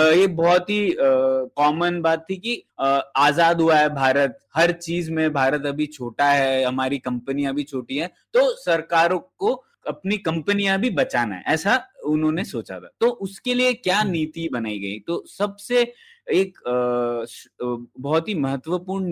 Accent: native